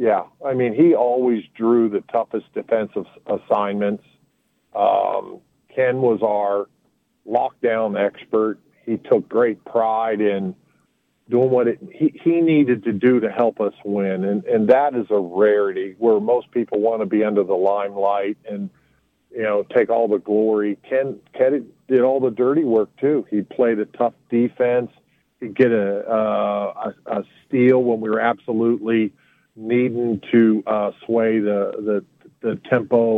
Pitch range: 105-120 Hz